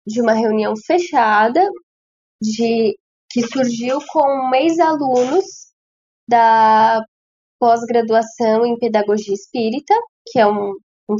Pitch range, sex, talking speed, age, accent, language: 220-295 Hz, female, 100 wpm, 10-29, Brazilian, Portuguese